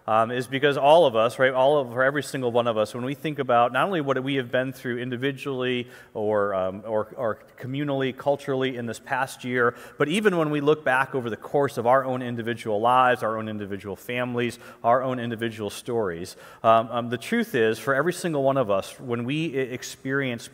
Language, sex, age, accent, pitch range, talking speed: English, male, 30-49, American, 125-150 Hz, 210 wpm